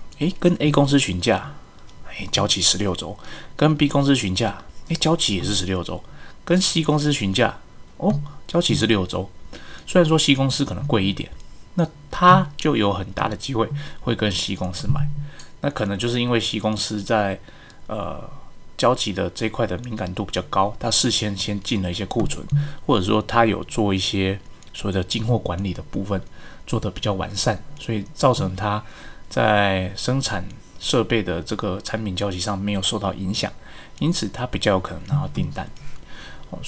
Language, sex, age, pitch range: Chinese, male, 20-39, 95-125 Hz